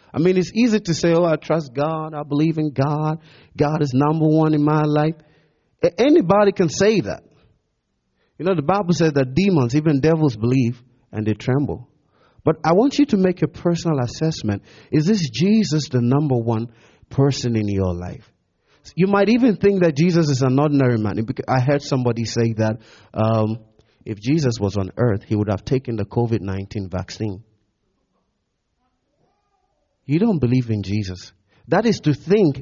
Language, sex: English, male